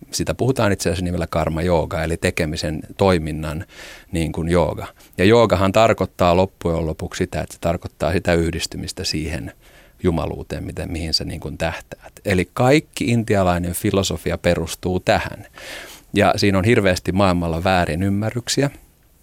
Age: 40-59